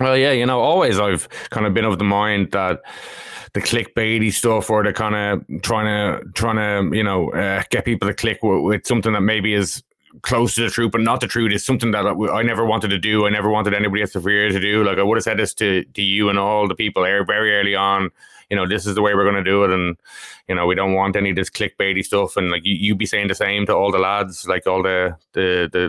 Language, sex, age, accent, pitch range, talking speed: English, male, 20-39, Irish, 100-115 Hz, 270 wpm